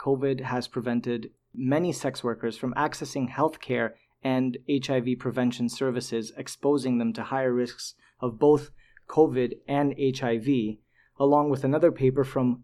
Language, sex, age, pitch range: English, male, 30-49, 120-140 Hz